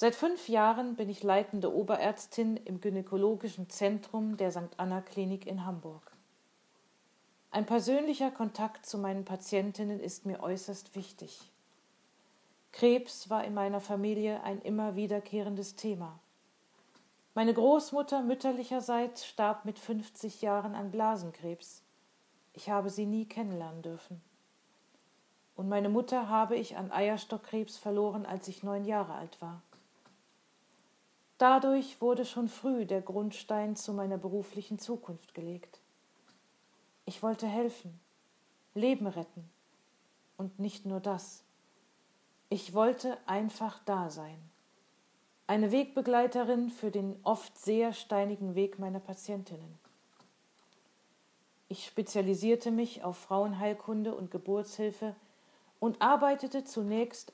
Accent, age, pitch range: German, 40-59, 195-225 Hz